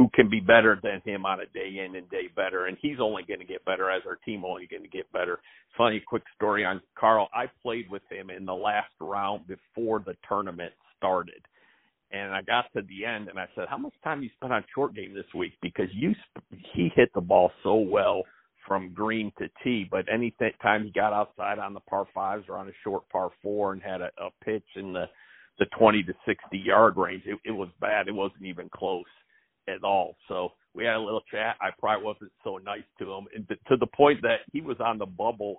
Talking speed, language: 235 wpm, English